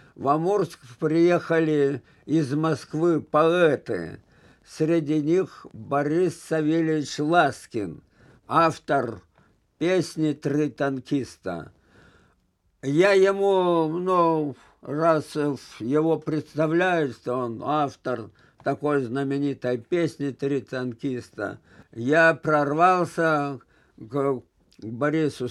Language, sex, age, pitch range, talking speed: Russian, male, 50-69, 140-170 Hz, 80 wpm